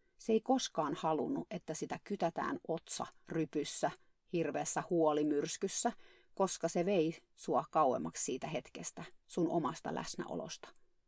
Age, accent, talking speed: 30-49, native, 115 wpm